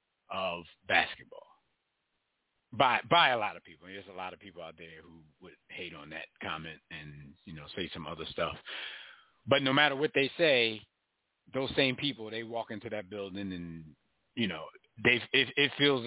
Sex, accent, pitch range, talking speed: male, American, 100-135 Hz, 190 wpm